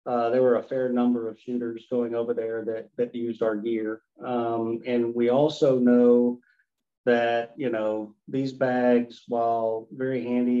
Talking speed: 165 wpm